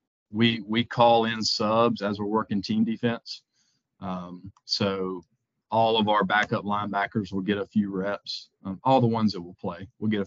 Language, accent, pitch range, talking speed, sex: English, American, 100-115 Hz, 185 wpm, male